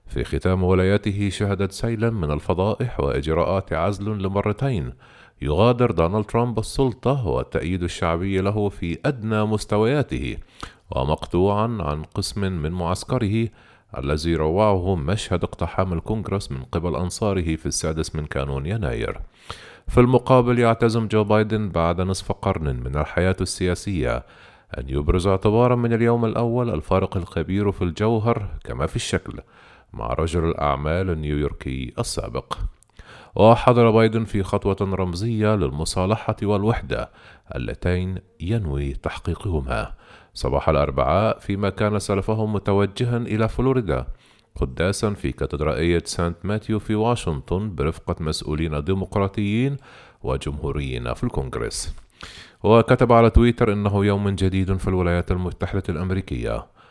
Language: Arabic